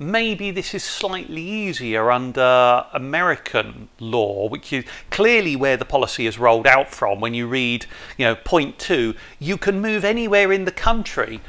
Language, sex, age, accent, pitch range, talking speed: English, male, 40-59, British, 145-200 Hz, 165 wpm